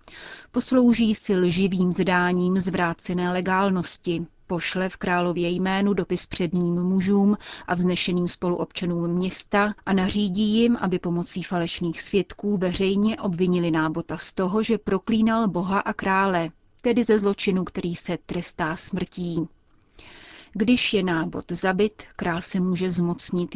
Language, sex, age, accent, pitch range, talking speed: Czech, female, 30-49, native, 175-205 Hz, 125 wpm